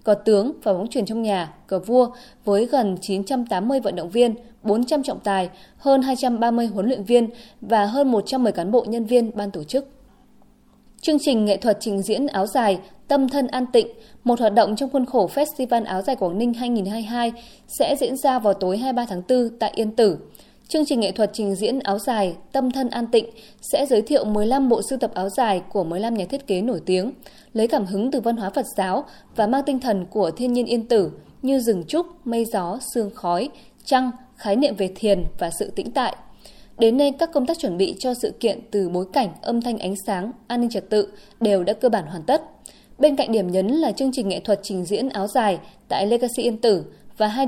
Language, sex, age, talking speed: Vietnamese, female, 20-39, 220 wpm